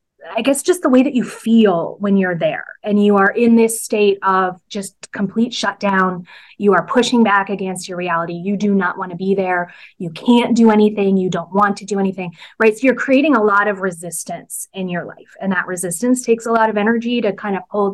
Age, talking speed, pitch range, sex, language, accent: 20-39, 230 wpm, 185-225 Hz, female, English, American